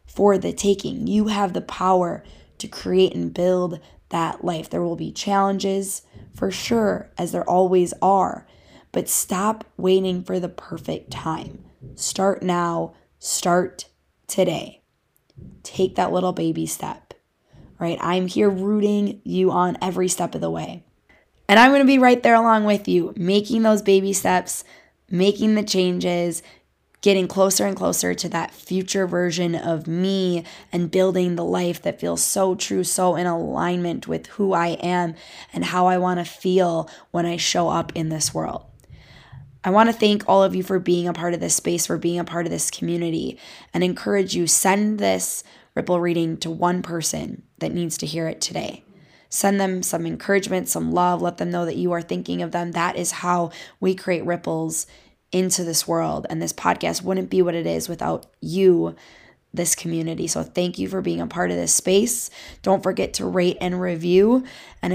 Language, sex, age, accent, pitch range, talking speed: English, female, 20-39, American, 165-190 Hz, 180 wpm